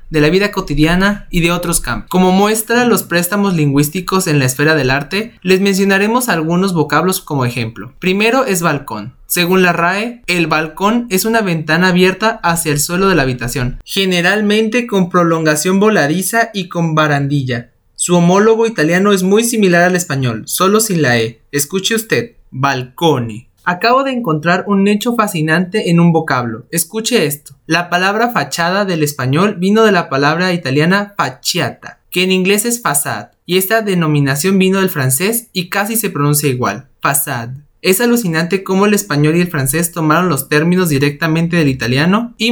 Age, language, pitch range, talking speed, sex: 20-39, Spanish, 150-195 Hz, 165 wpm, male